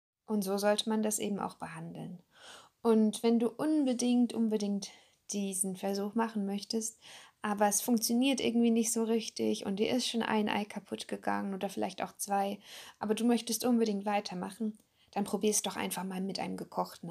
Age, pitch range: 10-29, 195-230 Hz